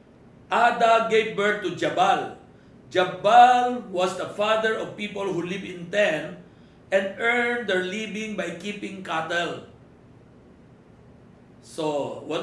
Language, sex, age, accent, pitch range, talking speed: Filipino, male, 50-69, native, 180-235 Hz, 115 wpm